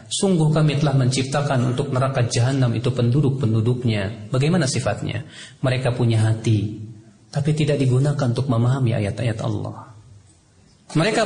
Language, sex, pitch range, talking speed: Indonesian, male, 120-160 Hz, 115 wpm